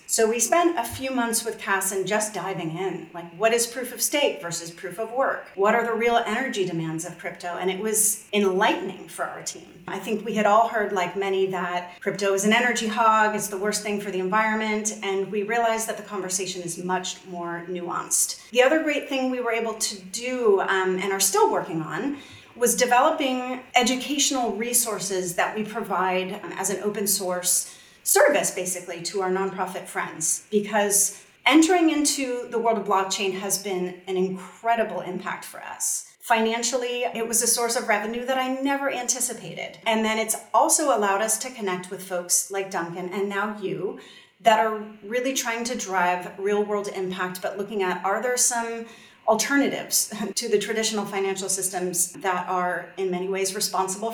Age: 30-49